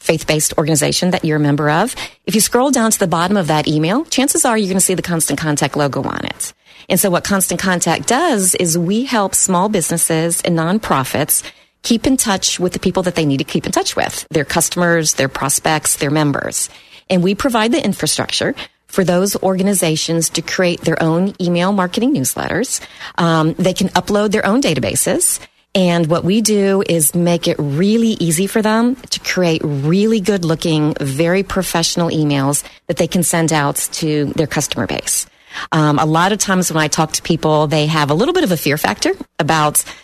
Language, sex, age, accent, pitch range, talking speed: English, female, 40-59, American, 155-190 Hz, 195 wpm